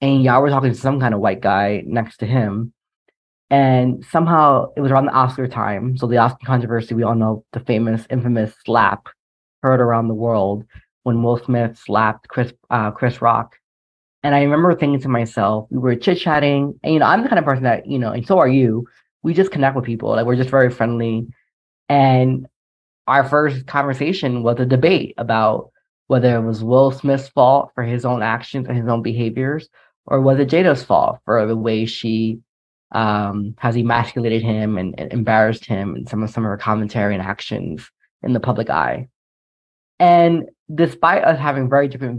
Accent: American